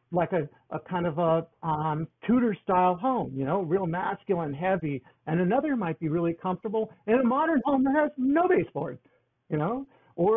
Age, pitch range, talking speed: 60-79, 150-205 Hz, 185 wpm